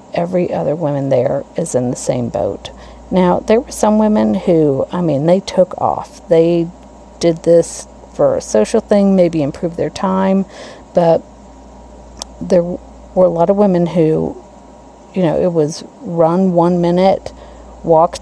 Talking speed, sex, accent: 155 wpm, female, American